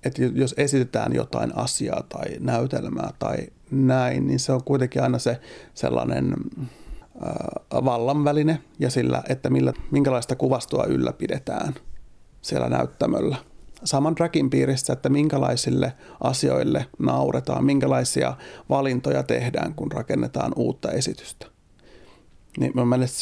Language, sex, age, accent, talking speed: Finnish, male, 30-49, native, 110 wpm